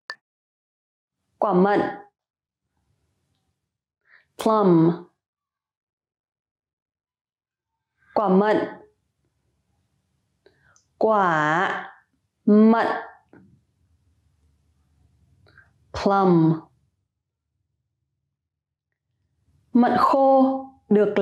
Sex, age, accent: female, 30-49, American